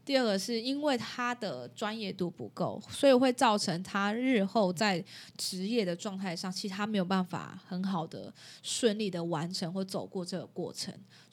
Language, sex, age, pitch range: Chinese, female, 20-39, 180-225 Hz